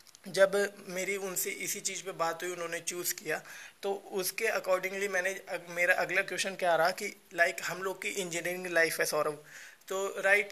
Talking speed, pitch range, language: 185 wpm, 155-185 Hz, Hindi